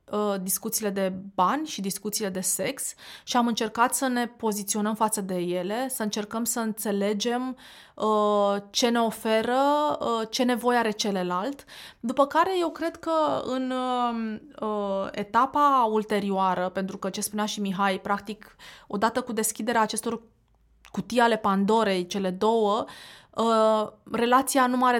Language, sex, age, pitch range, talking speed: Romanian, female, 20-39, 195-240 Hz, 130 wpm